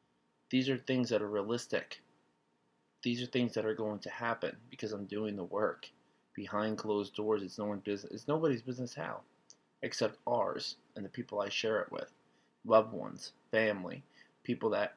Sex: male